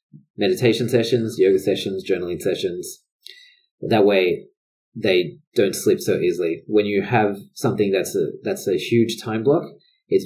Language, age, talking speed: English, 30-49, 145 wpm